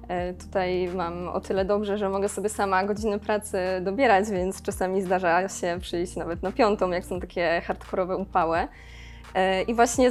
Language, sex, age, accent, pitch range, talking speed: Polish, female, 20-39, native, 180-210 Hz, 160 wpm